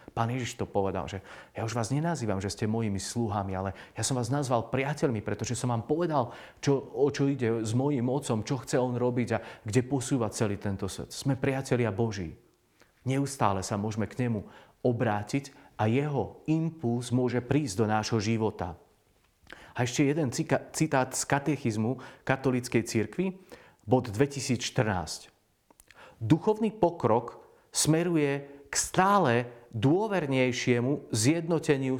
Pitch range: 115-150 Hz